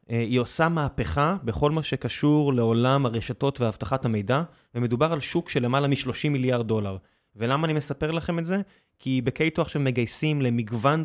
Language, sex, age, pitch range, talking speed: Hebrew, male, 20-39, 120-150 Hz, 150 wpm